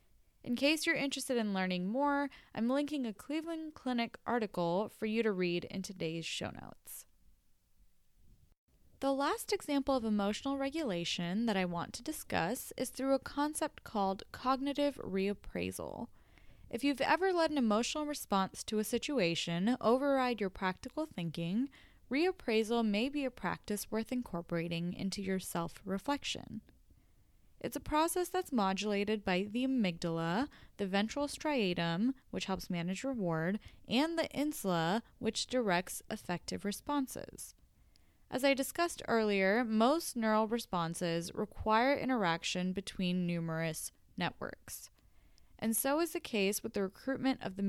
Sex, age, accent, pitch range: female, 10-29, American, 180-270 Hz